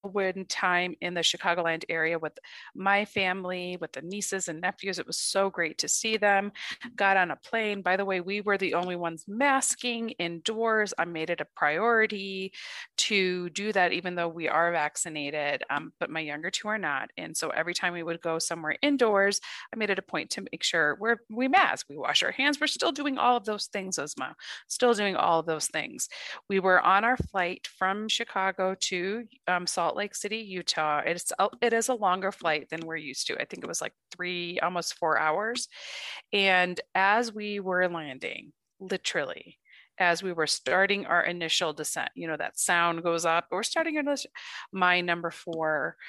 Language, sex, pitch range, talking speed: English, female, 170-205 Hz, 195 wpm